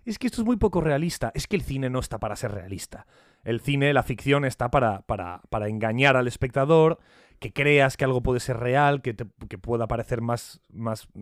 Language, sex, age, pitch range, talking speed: Spanish, male, 30-49, 120-155 Hz, 220 wpm